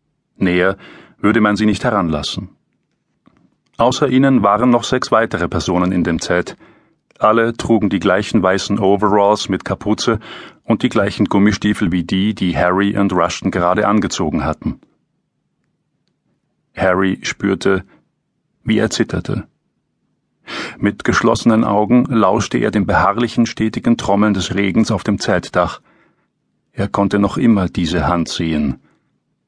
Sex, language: male, German